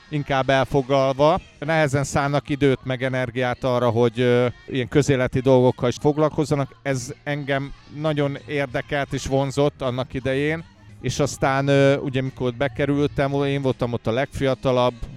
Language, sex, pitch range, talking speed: Hungarian, male, 110-135 Hz, 130 wpm